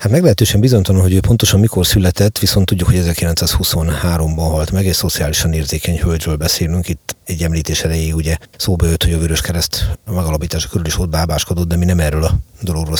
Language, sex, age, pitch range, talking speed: Hungarian, male, 30-49, 80-95 Hz, 190 wpm